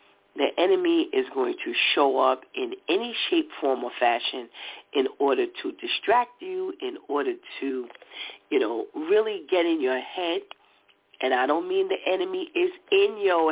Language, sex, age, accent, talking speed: English, female, 40-59, American, 165 wpm